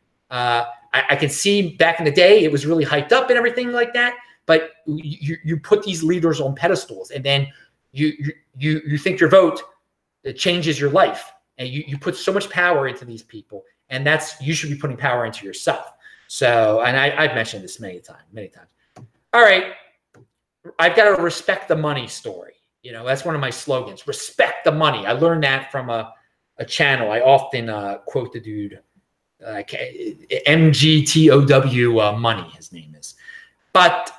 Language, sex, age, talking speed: English, male, 30-49, 185 wpm